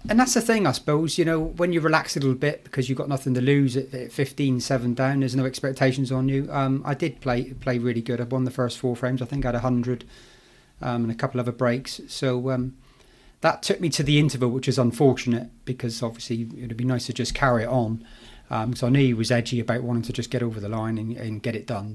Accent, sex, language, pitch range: British, male, English, 120-135 Hz